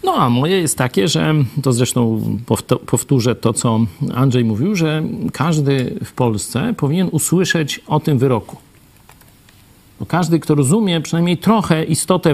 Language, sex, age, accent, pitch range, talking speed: Polish, male, 50-69, native, 150-240 Hz, 140 wpm